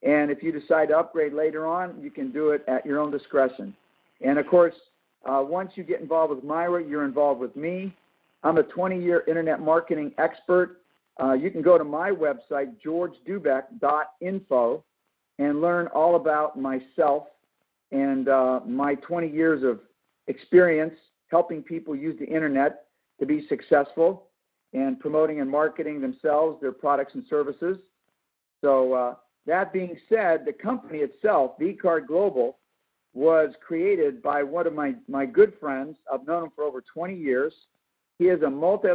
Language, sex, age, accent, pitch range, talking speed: English, male, 50-69, American, 145-180 Hz, 160 wpm